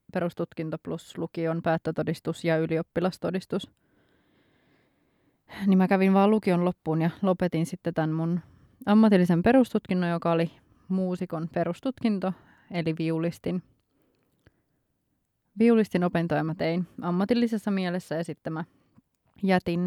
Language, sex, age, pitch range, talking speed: Finnish, female, 20-39, 165-190 Hz, 105 wpm